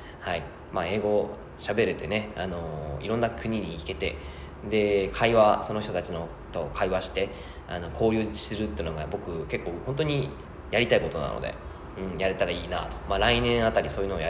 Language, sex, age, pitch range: Japanese, male, 20-39, 85-120 Hz